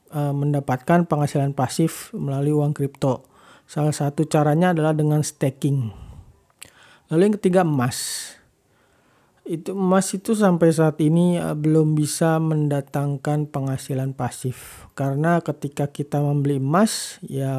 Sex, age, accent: male, 40-59, native